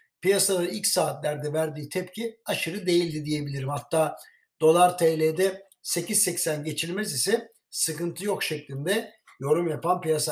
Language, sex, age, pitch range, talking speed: Turkish, male, 60-79, 155-195 Hz, 115 wpm